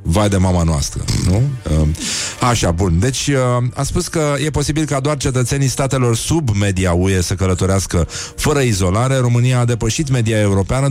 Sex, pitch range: male, 105-130 Hz